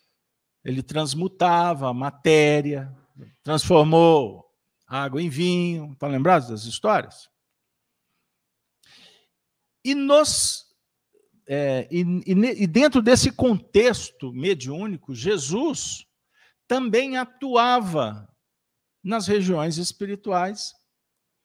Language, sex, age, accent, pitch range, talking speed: Portuguese, male, 50-69, Brazilian, 140-220 Hz, 75 wpm